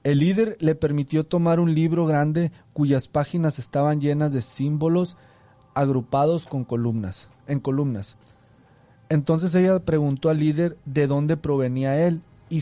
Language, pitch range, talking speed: Spanish, 130-160 Hz, 140 wpm